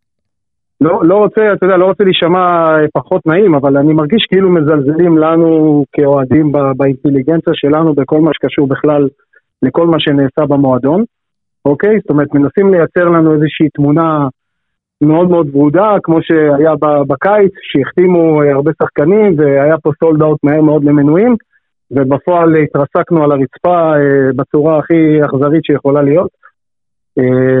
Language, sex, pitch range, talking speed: Hebrew, male, 145-180 Hz, 135 wpm